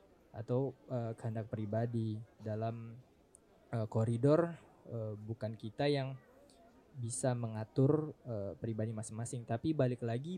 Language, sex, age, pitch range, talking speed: Indonesian, male, 20-39, 110-135 Hz, 110 wpm